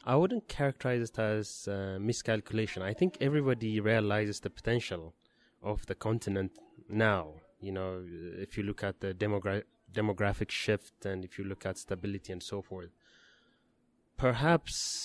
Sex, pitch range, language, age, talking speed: male, 95-115 Hz, English, 20-39, 150 wpm